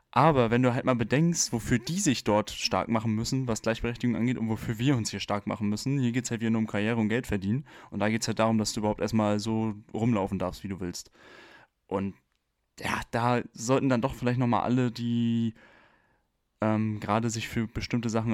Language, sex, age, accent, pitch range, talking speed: German, male, 10-29, German, 105-120 Hz, 215 wpm